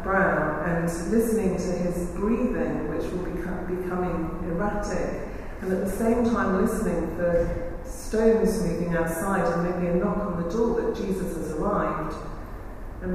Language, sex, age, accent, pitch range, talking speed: English, female, 40-59, British, 165-215 Hz, 155 wpm